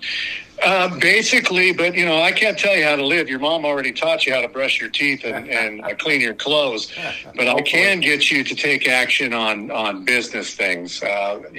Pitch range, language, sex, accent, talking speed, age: 110-140 Hz, English, male, American, 205 wpm, 50-69